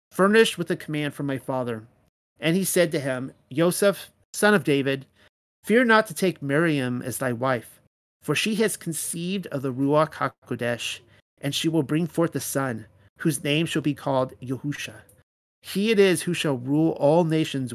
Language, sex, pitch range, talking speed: English, male, 125-165 Hz, 180 wpm